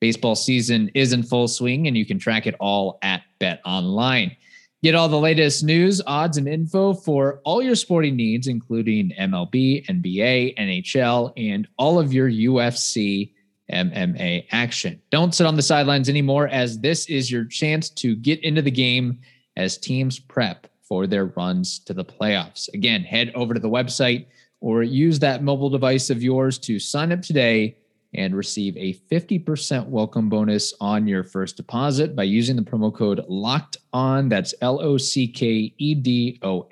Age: 20-39